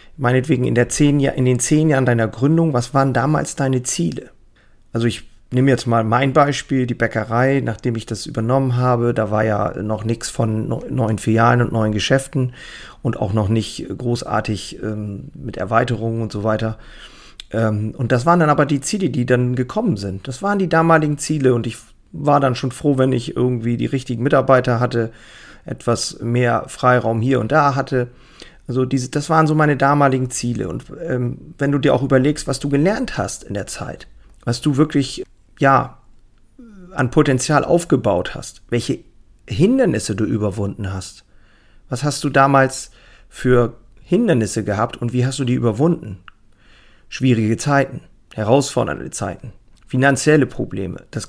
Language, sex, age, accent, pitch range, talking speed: German, male, 40-59, German, 110-140 Hz, 170 wpm